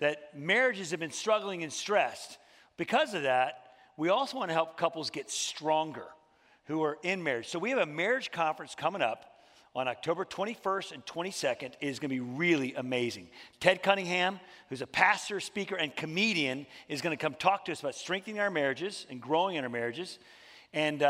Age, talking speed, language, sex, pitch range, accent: 40-59, 190 wpm, English, male, 145-190 Hz, American